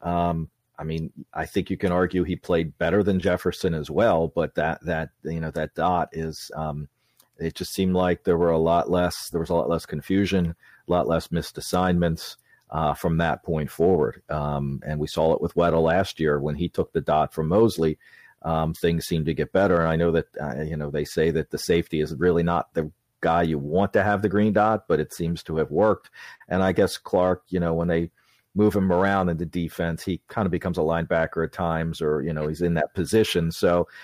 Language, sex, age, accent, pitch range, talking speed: English, male, 40-59, American, 80-95 Hz, 230 wpm